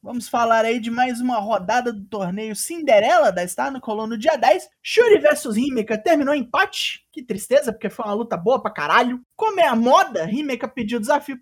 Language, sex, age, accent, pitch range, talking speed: Portuguese, male, 20-39, Brazilian, 215-295 Hz, 200 wpm